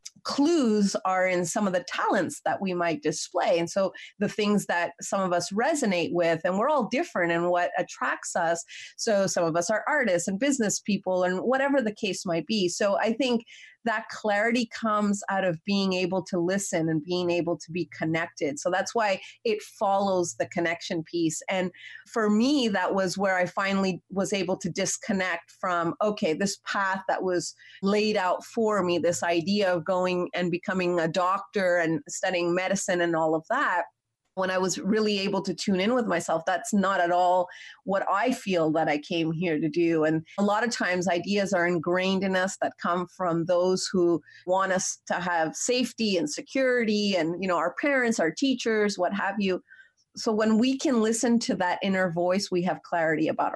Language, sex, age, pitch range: English, female, 30-49, 175-210 Hz